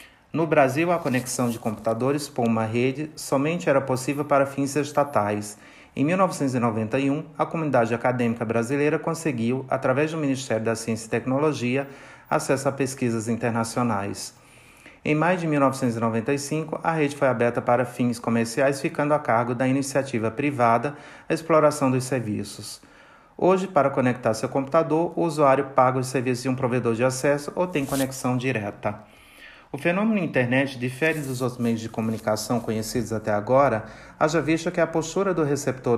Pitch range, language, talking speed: 120-145 Hz, Portuguese, 155 wpm